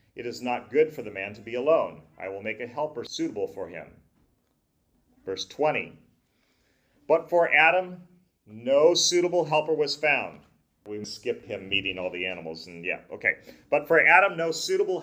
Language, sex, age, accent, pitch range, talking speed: English, male, 40-59, American, 120-160 Hz, 170 wpm